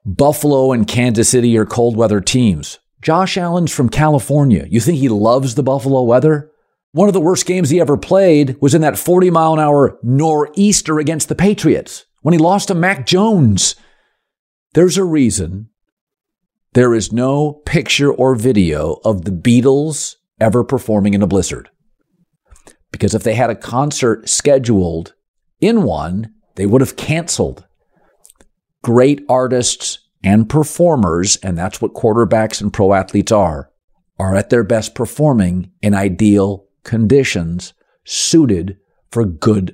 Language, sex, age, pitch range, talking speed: English, male, 50-69, 105-150 Hz, 140 wpm